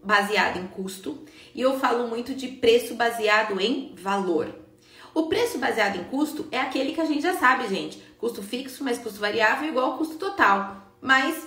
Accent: Brazilian